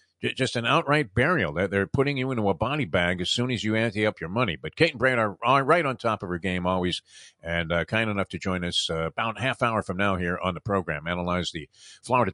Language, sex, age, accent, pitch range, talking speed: English, male, 50-69, American, 100-140 Hz, 260 wpm